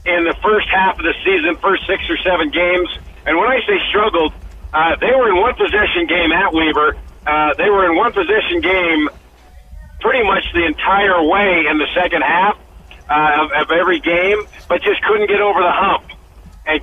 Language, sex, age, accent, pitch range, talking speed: English, male, 50-69, American, 145-185 Hz, 195 wpm